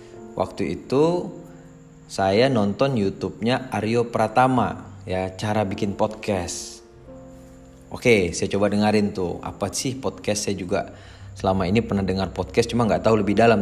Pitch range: 95-115 Hz